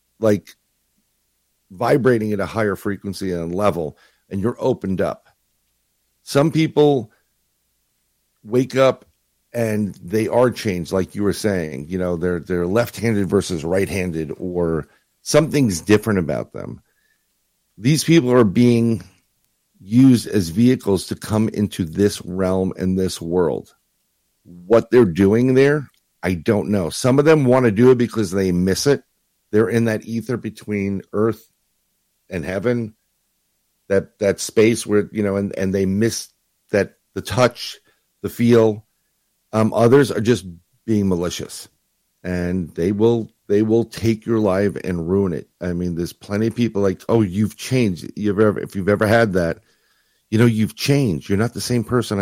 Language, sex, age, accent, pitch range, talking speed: English, male, 50-69, American, 95-115 Hz, 155 wpm